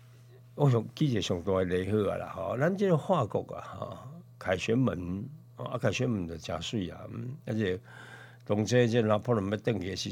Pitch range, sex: 100-130 Hz, male